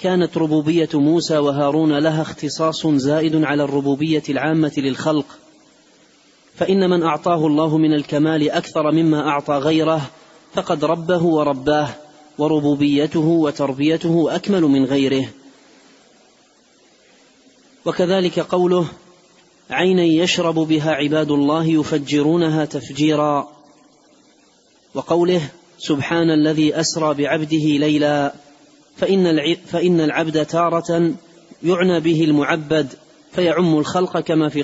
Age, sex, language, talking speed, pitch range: 30-49, male, Arabic, 95 wpm, 150-170 Hz